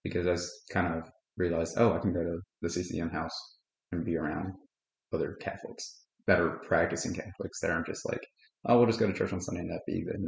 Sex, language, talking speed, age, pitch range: male, English, 230 wpm, 20-39, 85-100 Hz